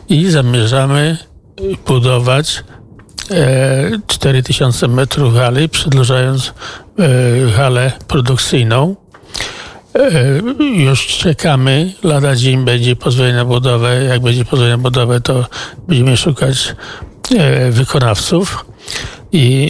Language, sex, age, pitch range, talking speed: Polish, male, 60-79, 125-150 Hz, 95 wpm